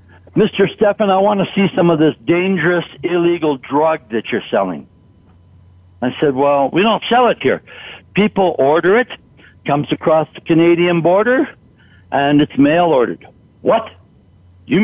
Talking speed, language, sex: 145 wpm, English, male